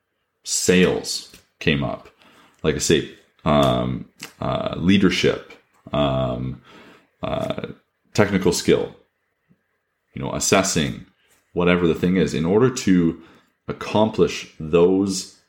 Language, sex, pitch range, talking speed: English, male, 75-90 Hz, 95 wpm